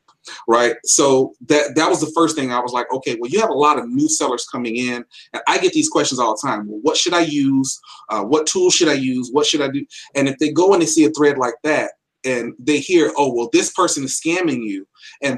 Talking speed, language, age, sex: 260 wpm, English, 30-49, male